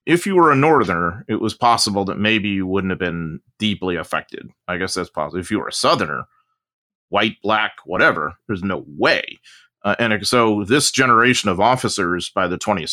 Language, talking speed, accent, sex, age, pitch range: English, 190 wpm, American, male, 30-49, 95-115 Hz